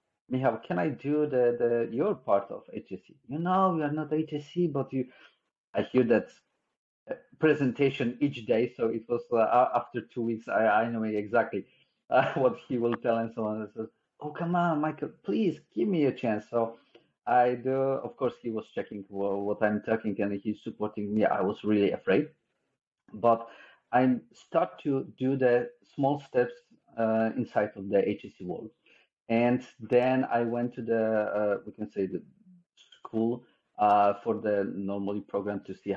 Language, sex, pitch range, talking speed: English, male, 100-125 Hz, 175 wpm